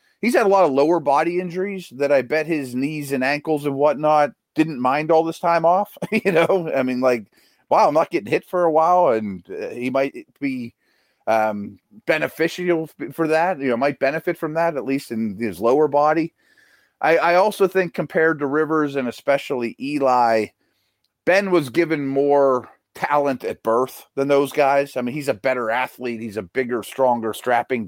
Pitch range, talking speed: 120-165 Hz, 185 wpm